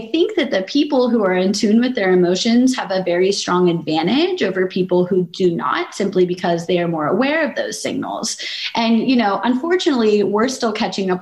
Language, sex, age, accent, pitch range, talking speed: English, female, 20-39, American, 180-235 Hz, 205 wpm